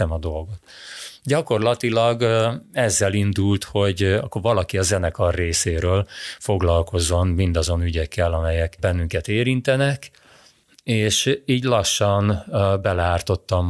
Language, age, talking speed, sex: Hungarian, 30-49, 90 wpm, male